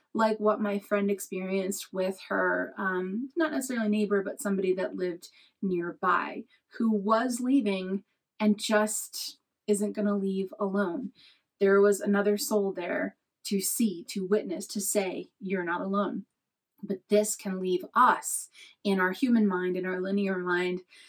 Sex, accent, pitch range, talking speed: female, American, 195-235 Hz, 150 wpm